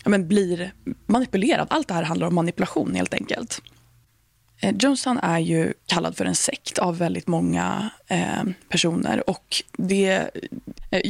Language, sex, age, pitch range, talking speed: Swedish, female, 20-39, 165-205 Hz, 150 wpm